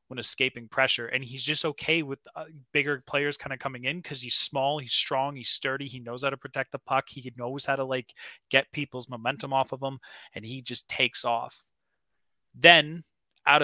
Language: English